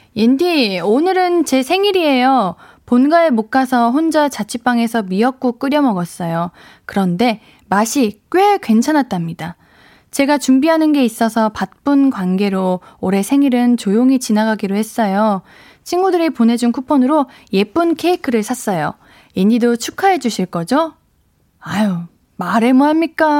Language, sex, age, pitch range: Korean, female, 20-39, 215-295 Hz